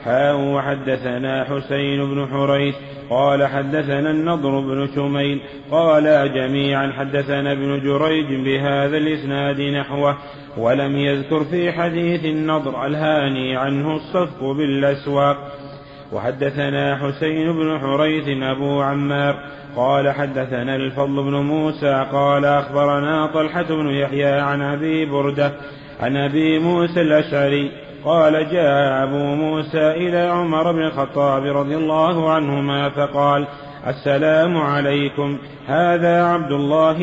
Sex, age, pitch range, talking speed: male, 30-49, 140-155 Hz, 110 wpm